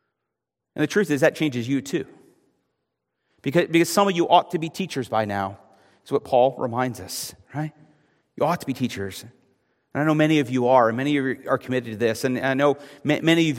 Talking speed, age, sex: 220 wpm, 40-59, male